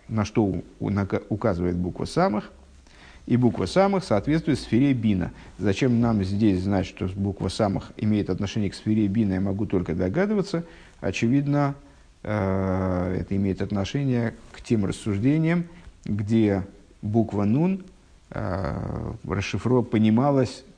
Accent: native